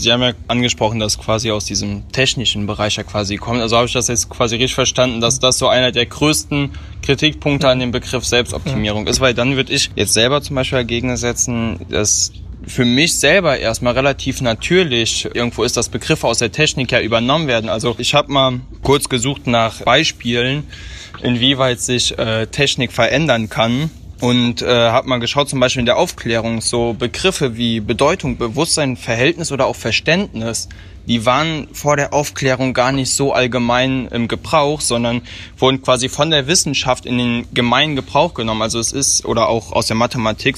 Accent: German